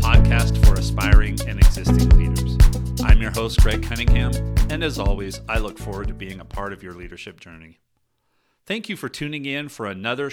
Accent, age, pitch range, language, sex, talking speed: American, 40-59, 95-120 Hz, English, male, 185 wpm